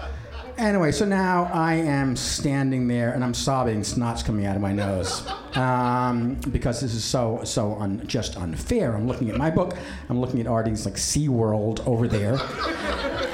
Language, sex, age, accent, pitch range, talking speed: English, male, 50-69, American, 105-135 Hz, 175 wpm